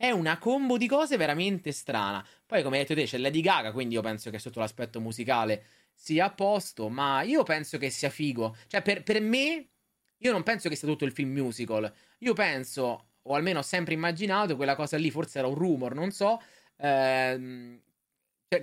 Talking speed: 195 wpm